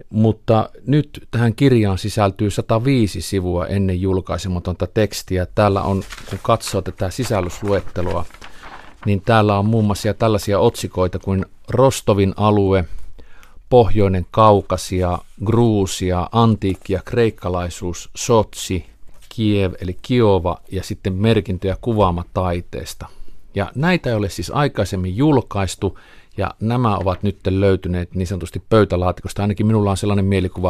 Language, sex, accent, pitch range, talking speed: Finnish, male, native, 90-110 Hz, 115 wpm